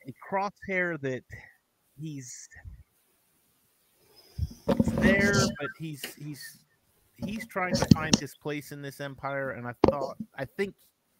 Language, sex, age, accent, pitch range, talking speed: English, male, 30-49, American, 105-135 Hz, 125 wpm